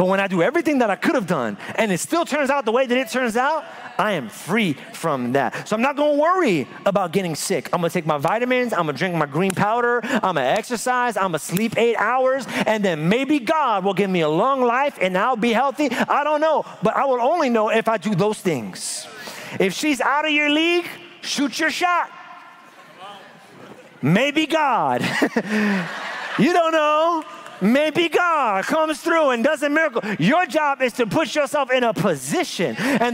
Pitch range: 210-290 Hz